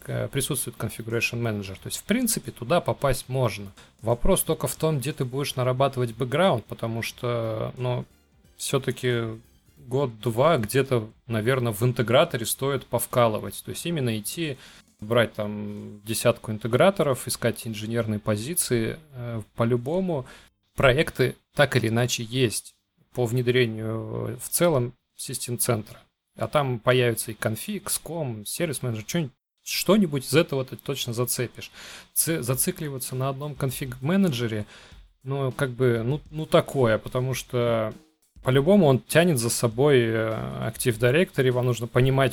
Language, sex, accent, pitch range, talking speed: Russian, male, native, 115-135 Hz, 125 wpm